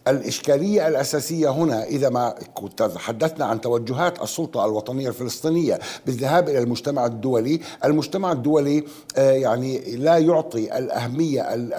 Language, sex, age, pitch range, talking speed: Arabic, male, 60-79, 135-175 Hz, 105 wpm